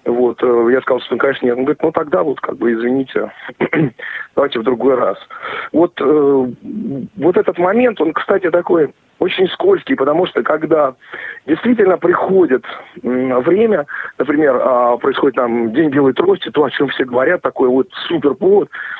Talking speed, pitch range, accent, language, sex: 150 wpm, 130-195 Hz, native, Russian, male